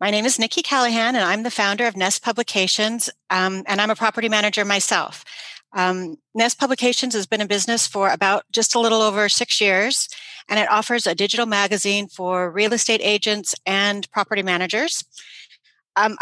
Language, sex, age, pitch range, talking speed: English, female, 40-59, 190-220 Hz, 180 wpm